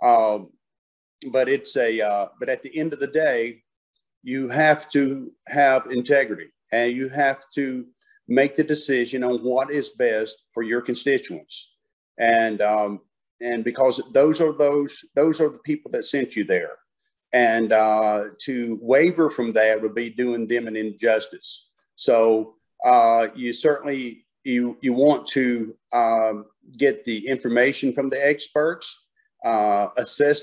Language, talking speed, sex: English, 150 wpm, male